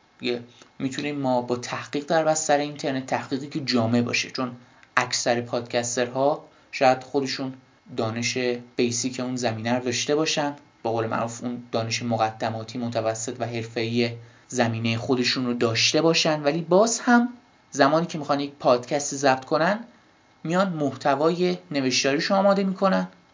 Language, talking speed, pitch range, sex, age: Persian, 135 wpm, 125-160 Hz, male, 20-39